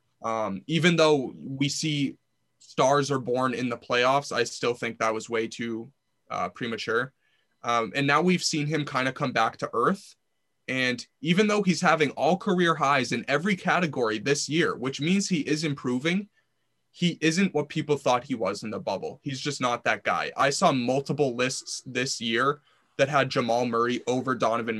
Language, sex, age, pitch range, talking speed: English, male, 20-39, 120-155 Hz, 185 wpm